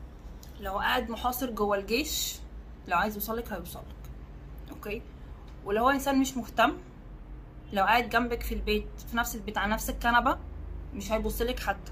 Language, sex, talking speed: Arabic, female, 140 wpm